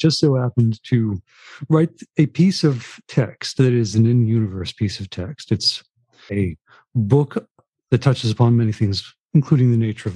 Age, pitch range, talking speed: 50-69, 110-140 Hz, 165 wpm